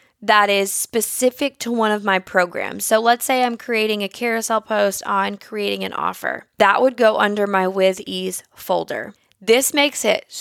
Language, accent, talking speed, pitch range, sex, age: English, American, 175 wpm, 205-245 Hz, female, 20-39